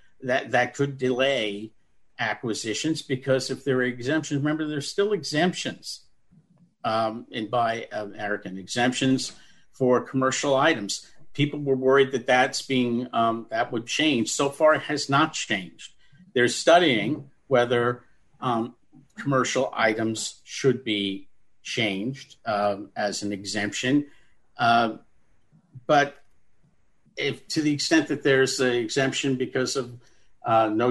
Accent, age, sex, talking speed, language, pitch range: American, 50-69, male, 125 wpm, English, 115-145 Hz